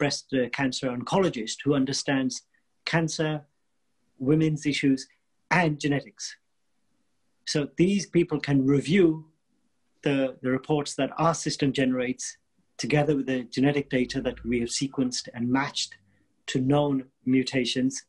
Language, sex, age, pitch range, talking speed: English, male, 40-59, 130-150 Hz, 120 wpm